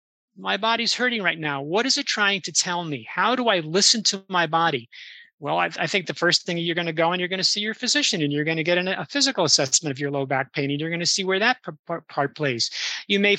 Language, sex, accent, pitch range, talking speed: English, male, American, 155-205 Hz, 270 wpm